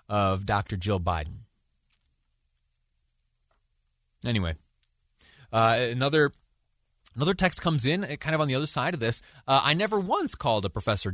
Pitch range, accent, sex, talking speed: 95-135 Hz, American, male, 145 wpm